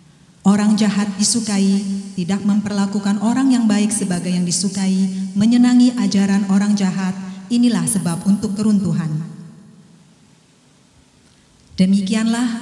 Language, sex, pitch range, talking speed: Indonesian, female, 185-220 Hz, 95 wpm